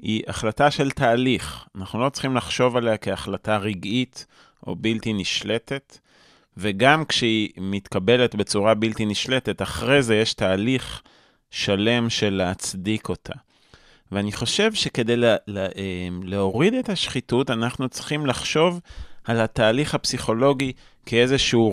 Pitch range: 100-130 Hz